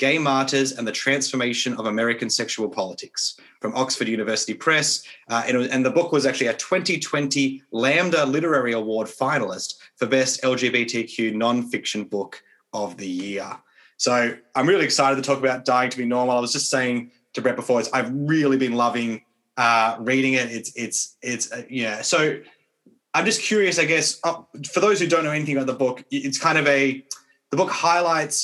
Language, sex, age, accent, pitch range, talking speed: English, male, 20-39, Australian, 120-145 Hz, 190 wpm